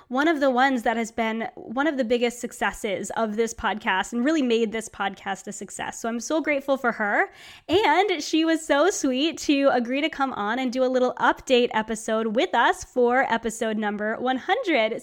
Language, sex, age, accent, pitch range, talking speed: English, female, 20-39, American, 225-295 Hz, 200 wpm